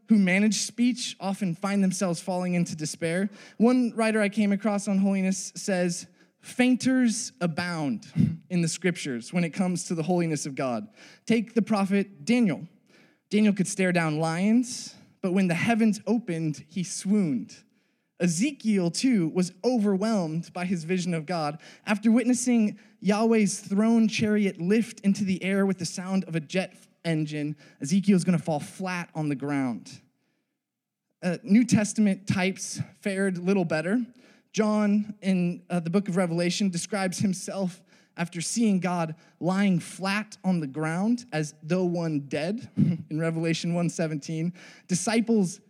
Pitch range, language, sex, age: 170-210 Hz, English, male, 20-39